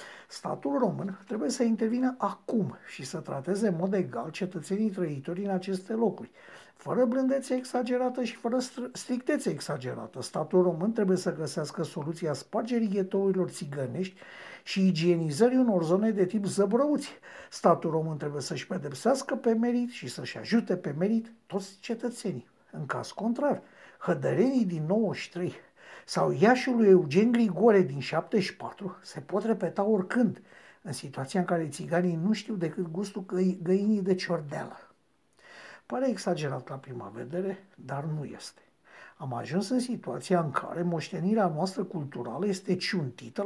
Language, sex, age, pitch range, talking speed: Romanian, male, 60-79, 170-230 Hz, 140 wpm